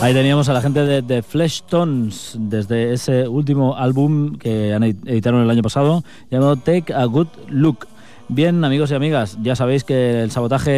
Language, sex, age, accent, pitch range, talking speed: Spanish, male, 20-39, Spanish, 110-130 Hz, 185 wpm